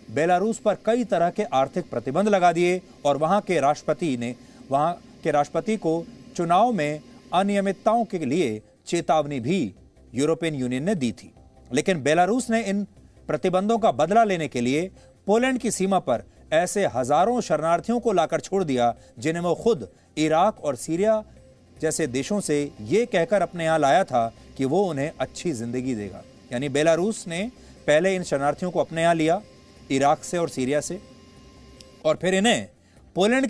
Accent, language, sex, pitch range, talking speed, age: Indian, English, male, 135-190 Hz, 140 wpm, 40-59